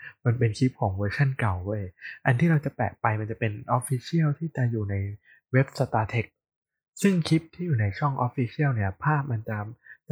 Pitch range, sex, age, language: 110-135 Hz, male, 20-39, Thai